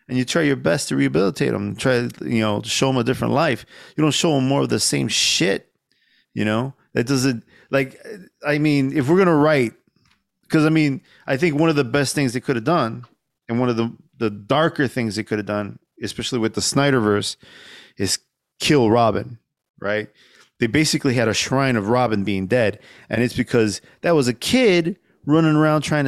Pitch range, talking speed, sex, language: 110-145 Hz, 205 wpm, male, English